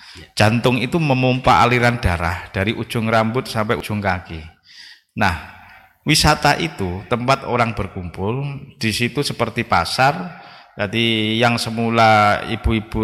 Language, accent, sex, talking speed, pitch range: Indonesian, native, male, 115 wpm, 95-120 Hz